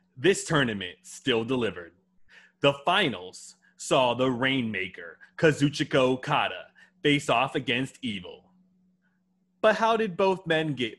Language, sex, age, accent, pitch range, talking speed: English, male, 30-49, American, 125-180 Hz, 115 wpm